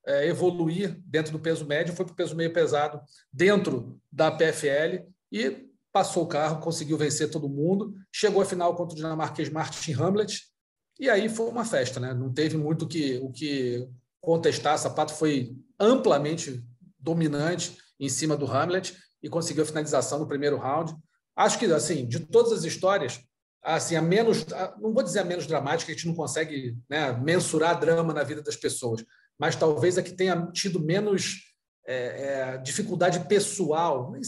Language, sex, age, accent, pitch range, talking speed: Portuguese, male, 40-59, Brazilian, 150-195 Hz, 175 wpm